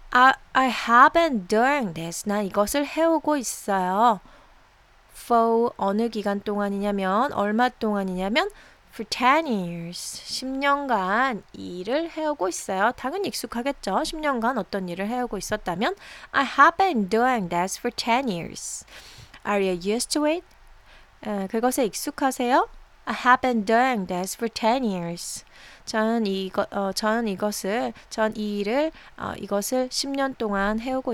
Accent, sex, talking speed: Korean, female, 130 wpm